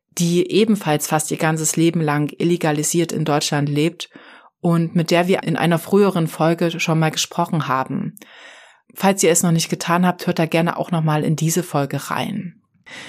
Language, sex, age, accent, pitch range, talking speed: German, female, 30-49, German, 165-185 Hz, 180 wpm